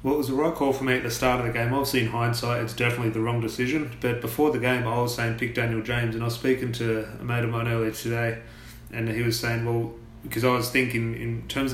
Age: 30-49